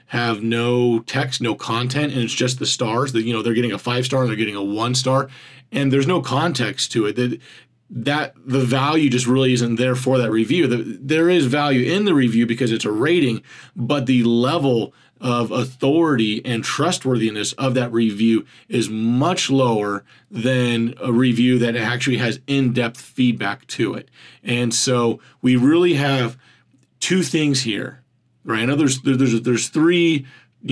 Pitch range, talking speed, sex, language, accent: 120-135 Hz, 170 wpm, male, English, American